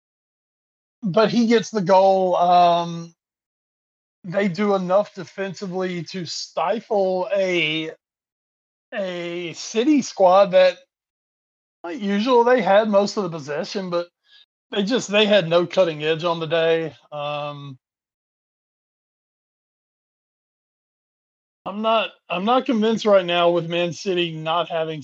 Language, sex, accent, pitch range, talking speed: English, male, American, 150-195 Hz, 115 wpm